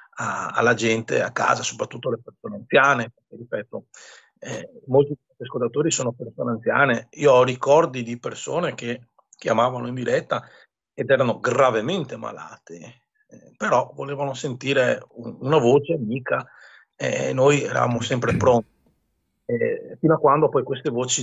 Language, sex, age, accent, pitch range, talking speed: Italian, male, 40-59, native, 120-175 Hz, 135 wpm